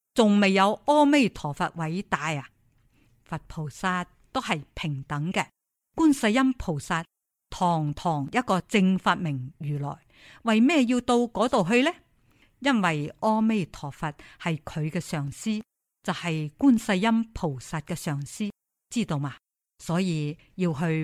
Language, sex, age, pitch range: Chinese, female, 50-69, 160-220 Hz